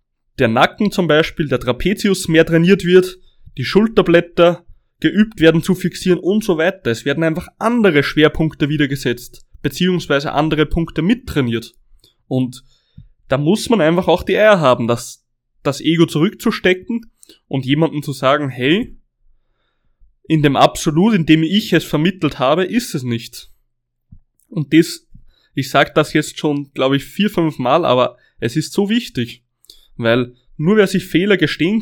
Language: German